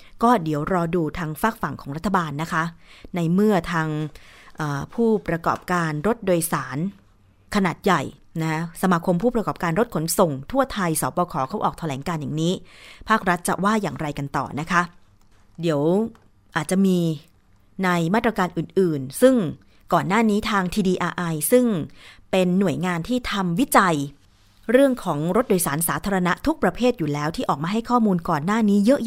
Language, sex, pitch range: Thai, female, 160-205 Hz